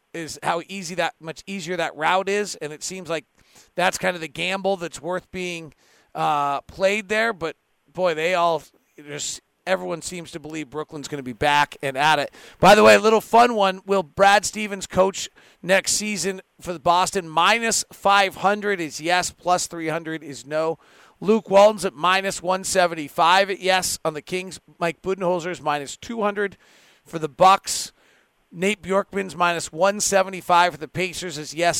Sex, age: male, 40-59